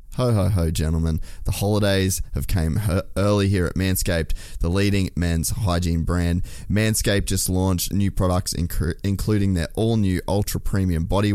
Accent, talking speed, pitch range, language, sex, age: Australian, 150 wpm, 85-105 Hz, English, male, 20-39